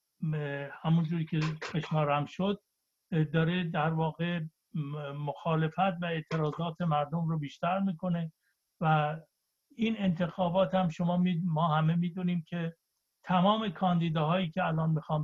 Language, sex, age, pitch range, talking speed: Persian, male, 60-79, 150-175 Hz, 120 wpm